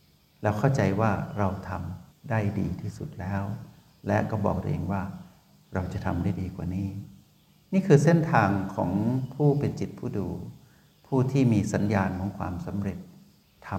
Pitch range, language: 100-140 Hz, Thai